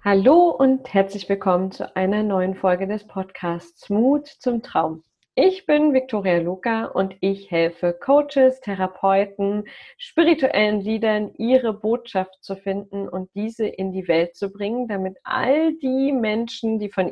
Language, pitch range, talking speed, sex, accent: German, 195-245 Hz, 145 wpm, female, German